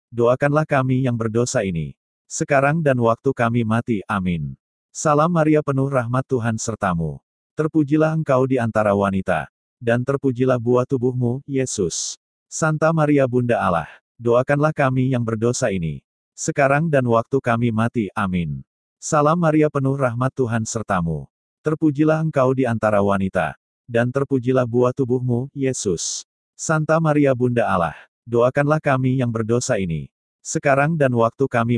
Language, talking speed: Indonesian, 135 wpm